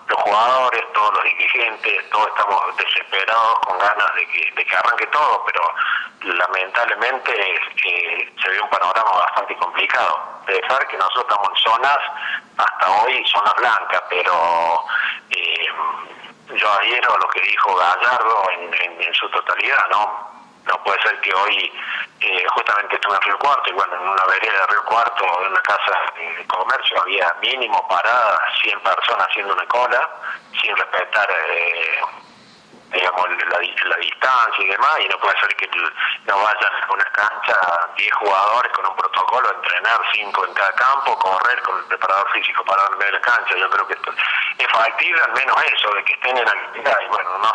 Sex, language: male, Spanish